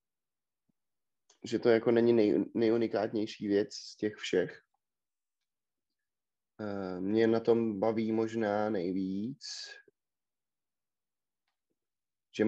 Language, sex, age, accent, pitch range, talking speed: Czech, male, 30-49, native, 100-115 Hz, 80 wpm